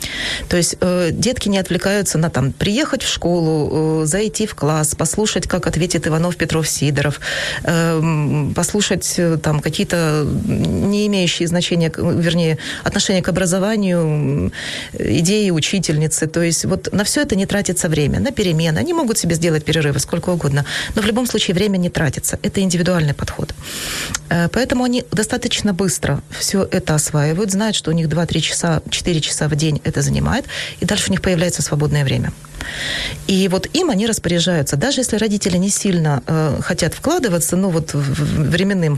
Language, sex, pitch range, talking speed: Ukrainian, female, 155-200 Hz, 170 wpm